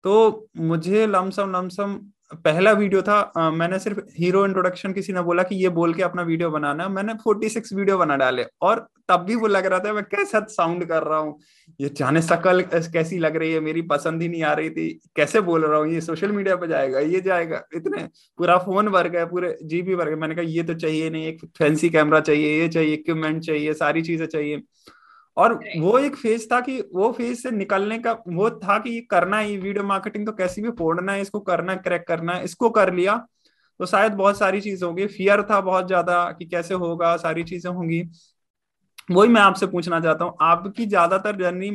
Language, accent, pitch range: Hindi, native, 165-205 Hz